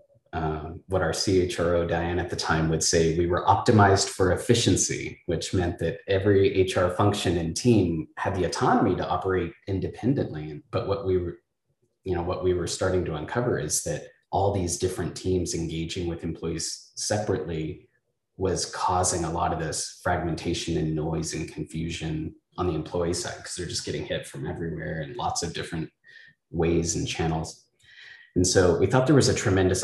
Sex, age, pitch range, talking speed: male, 30-49, 80-95 Hz, 175 wpm